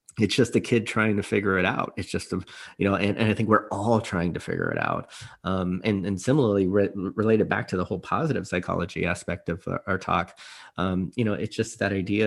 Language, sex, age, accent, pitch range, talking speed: English, male, 30-49, American, 95-110 Hz, 240 wpm